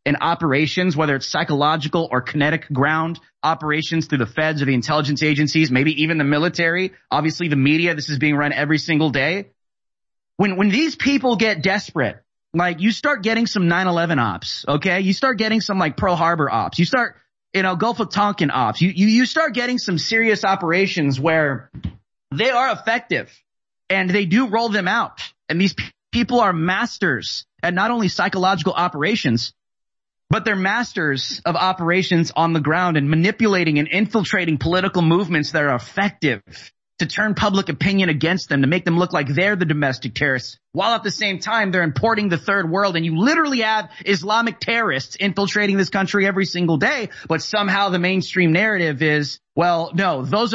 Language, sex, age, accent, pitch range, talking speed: English, male, 30-49, American, 150-200 Hz, 180 wpm